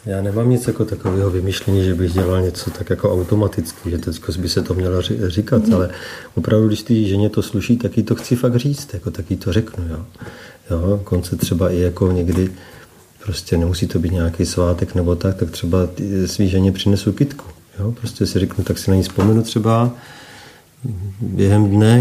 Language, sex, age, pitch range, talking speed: Czech, male, 40-59, 90-110 Hz, 190 wpm